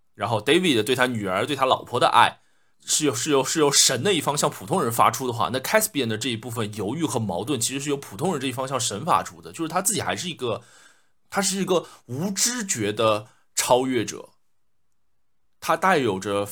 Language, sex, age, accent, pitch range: Chinese, male, 20-39, native, 110-150 Hz